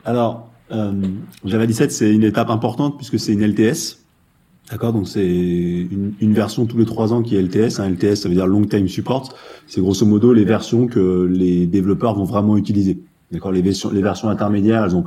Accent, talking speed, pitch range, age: French, 205 wpm, 95-115 Hz, 30-49